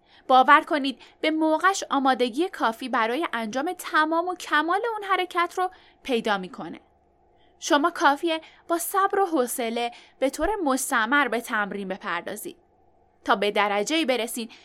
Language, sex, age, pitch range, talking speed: Persian, female, 10-29, 235-345 Hz, 130 wpm